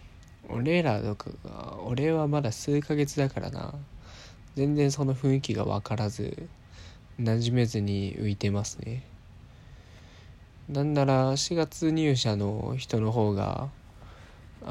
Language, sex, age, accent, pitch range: Japanese, male, 20-39, native, 100-130 Hz